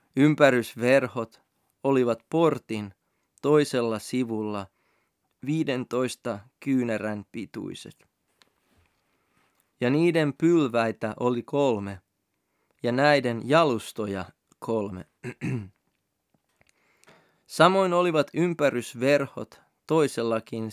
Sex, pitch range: male, 110-140 Hz